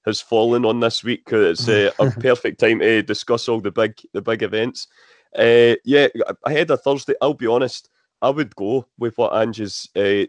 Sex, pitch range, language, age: male, 105-125 Hz, English, 30-49